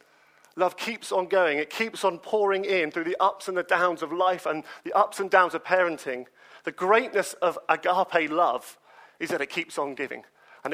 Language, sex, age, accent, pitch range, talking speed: English, male, 40-59, British, 150-185 Hz, 200 wpm